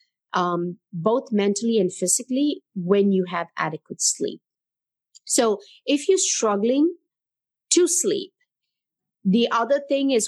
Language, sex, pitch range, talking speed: English, female, 180-235 Hz, 115 wpm